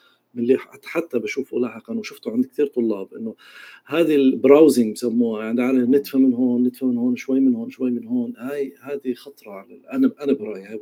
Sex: male